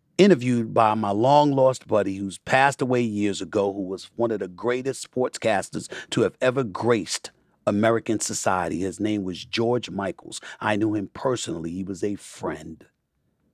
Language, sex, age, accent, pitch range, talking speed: English, male, 40-59, American, 115-145 Hz, 165 wpm